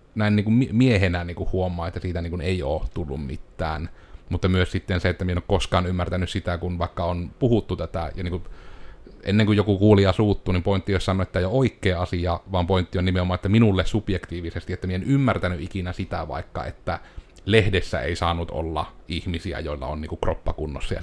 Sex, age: male, 30-49